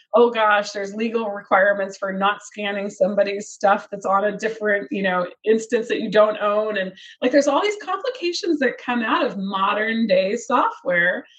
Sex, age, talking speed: female, 30-49, 180 wpm